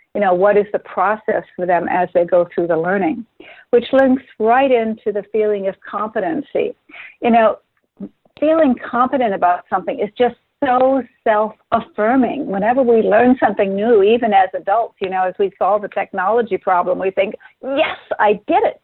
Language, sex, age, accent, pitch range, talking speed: English, female, 60-79, American, 190-240 Hz, 170 wpm